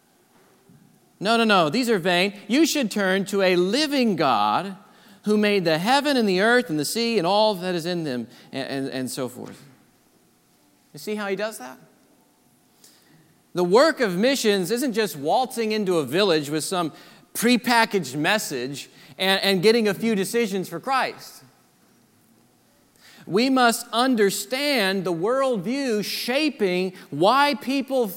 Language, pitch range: English, 155-220 Hz